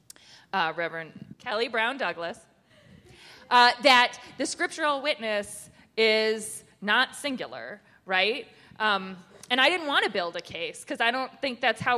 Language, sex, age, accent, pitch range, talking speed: English, female, 20-39, American, 180-240 Hz, 145 wpm